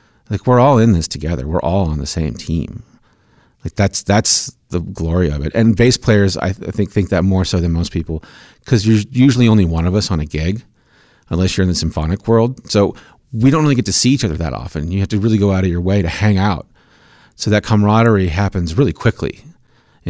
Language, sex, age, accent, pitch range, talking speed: English, male, 40-59, American, 90-115 Hz, 235 wpm